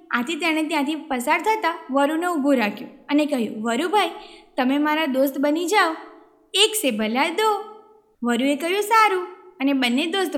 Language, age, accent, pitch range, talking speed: Gujarati, 20-39, native, 270-365 Hz, 145 wpm